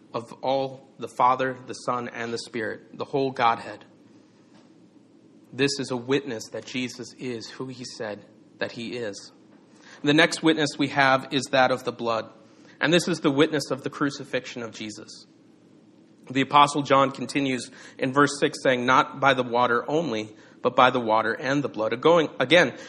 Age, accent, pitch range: 40-59, American, 120-145 Hz